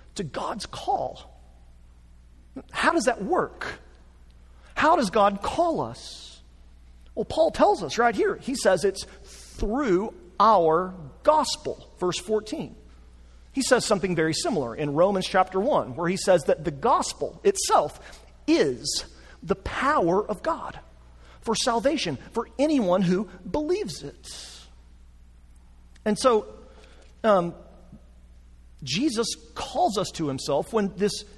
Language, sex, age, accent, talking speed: English, male, 40-59, American, 120 wpm